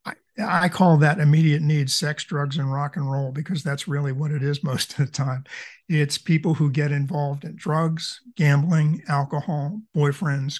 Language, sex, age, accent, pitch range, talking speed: English, male, 50-69, American, 145-175 Hz, 175 wpm